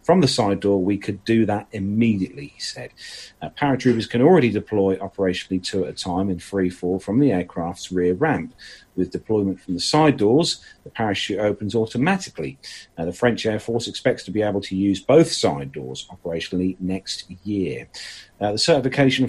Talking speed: 185 wpm